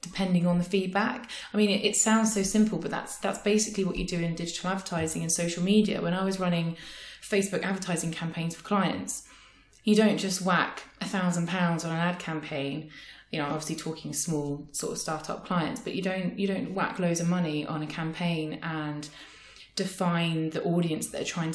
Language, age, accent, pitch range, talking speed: English, 20-39, British, 160-195 Hz, 195 wpm